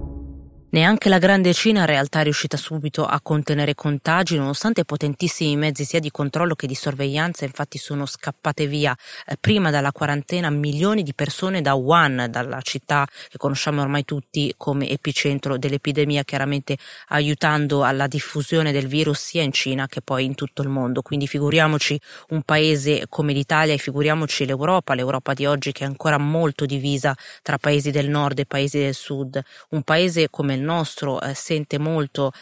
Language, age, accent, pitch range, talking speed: Italian, 30-49, native, 140-155 Hz, 165 wpm